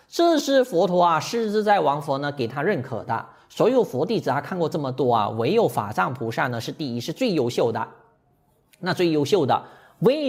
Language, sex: Chinese, male